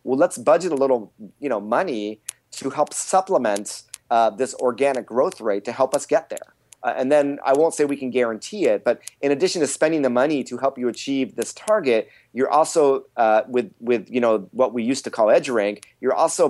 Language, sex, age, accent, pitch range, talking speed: English, male, 30-49, American, 115-140 Hz, 220 wpm